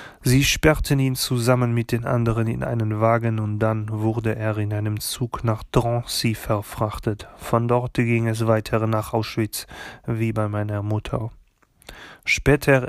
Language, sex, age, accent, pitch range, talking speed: German, male, 30-49, German, 105-120 Hz, 150 wpm